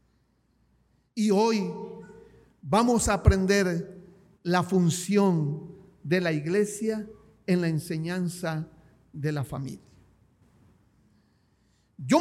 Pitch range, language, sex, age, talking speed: 180-250 Hz, Spanish, male, 50-69, 85 wpm